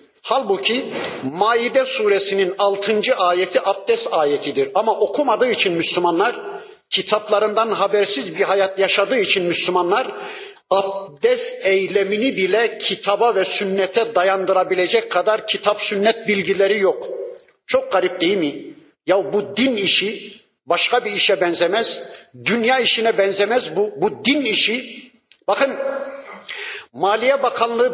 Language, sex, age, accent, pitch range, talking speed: Turkish, male, 50-69, native, 195-305 Hz, 110 wpm